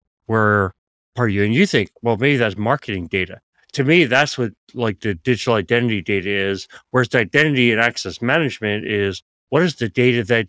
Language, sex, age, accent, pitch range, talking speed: English, male, 30-49, American, 100-125 Hz, 190 wpm